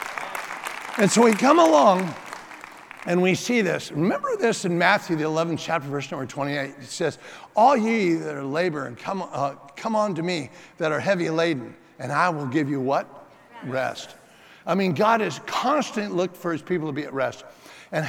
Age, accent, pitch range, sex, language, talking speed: 60-79, American, 135-185 Hz, male, English, 190 wpm